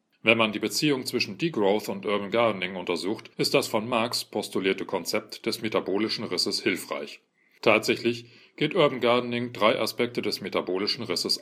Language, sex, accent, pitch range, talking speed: English, male, German, 105-135 Hz, 150 wpm